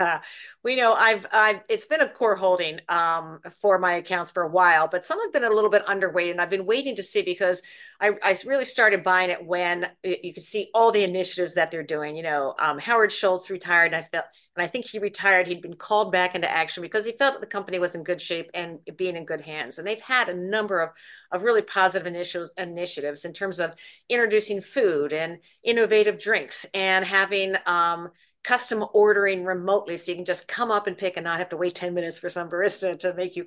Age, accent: 50-69, American